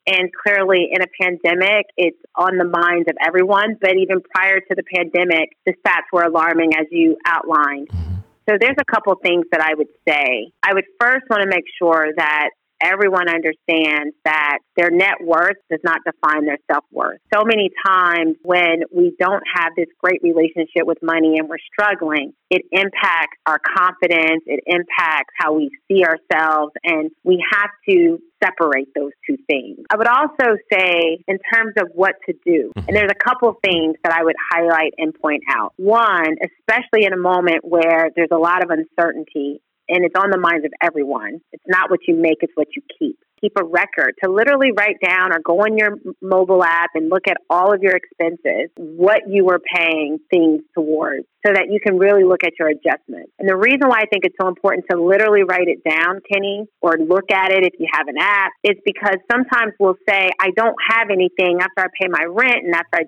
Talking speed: 200 wpm